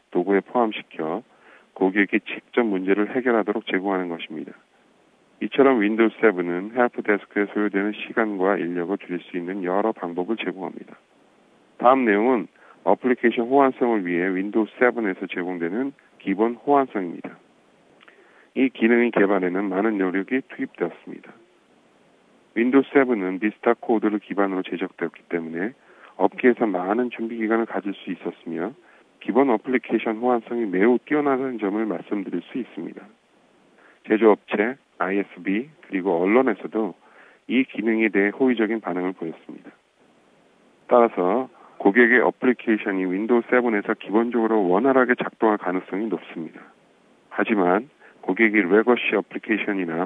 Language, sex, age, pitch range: Korean, male, 40-59, 95-120 Hz